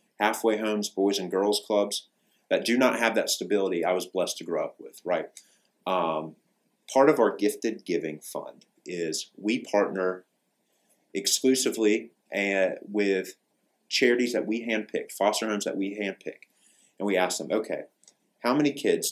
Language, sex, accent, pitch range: Chinese, male, American, 95-110 Hz